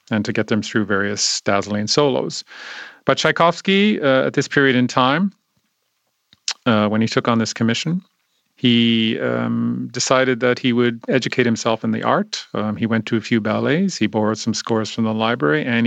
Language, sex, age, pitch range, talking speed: English, male, 40-59, 110-130 Hz, 185 wpm